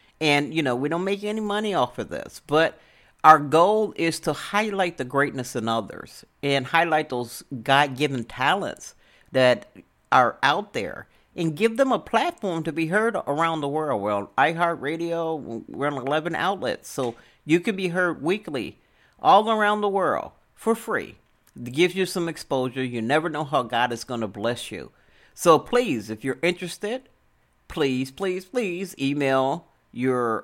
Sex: male